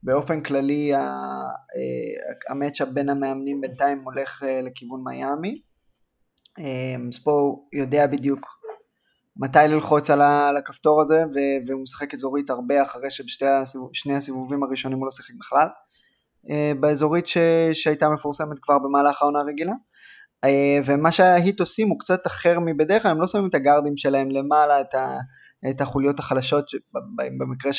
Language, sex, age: Hebrew, male, 20-39